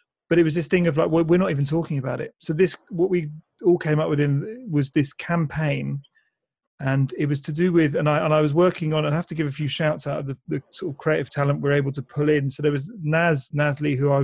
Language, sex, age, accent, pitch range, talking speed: English, male, 30-49, British, 140-155 Hz, 275 wpm